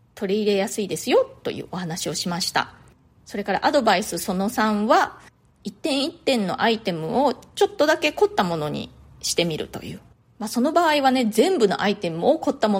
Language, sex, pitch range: Japanese, female, 195-270 Hz